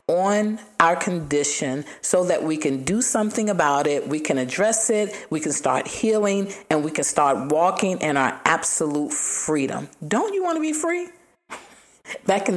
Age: 40-59